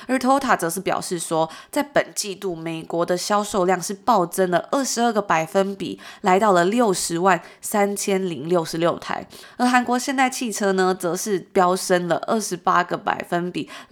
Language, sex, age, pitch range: Chinese, female, 20-39, 175-220 Hz